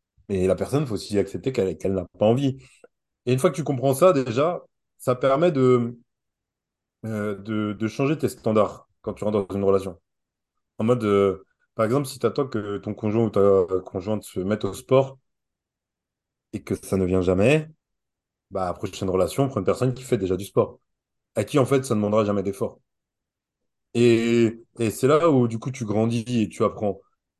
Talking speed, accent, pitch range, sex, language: 200 wpm, French, 105-130 Hz, male, French